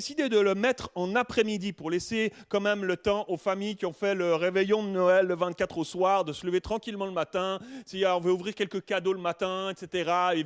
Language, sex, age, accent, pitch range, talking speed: French, male, 30-49, French, 165-215 Hz, 235 wpm